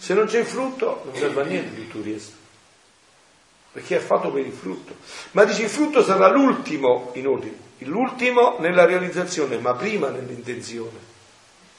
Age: 50-69